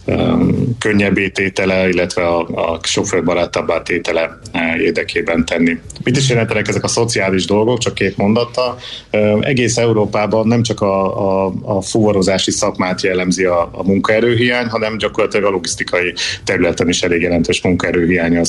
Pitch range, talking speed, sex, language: 85-105 Hz, 135 wpm, male, Hungarian